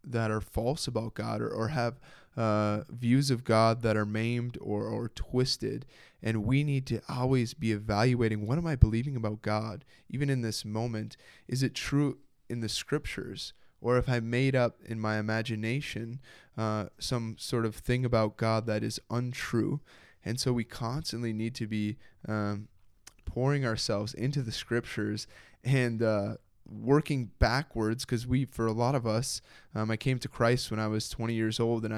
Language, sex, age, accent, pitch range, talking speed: English, male, 10-29, American, 110-125 Hz, 180 wpm